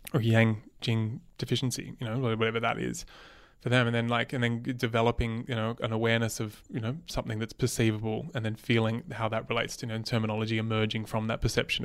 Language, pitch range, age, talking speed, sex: English, 110-125 Hz, 20-39, 195 wpm, male